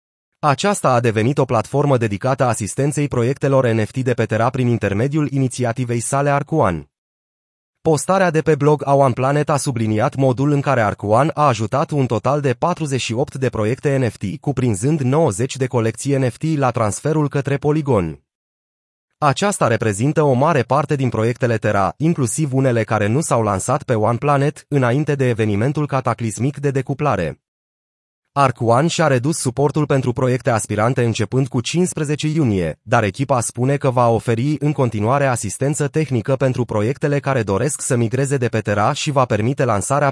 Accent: native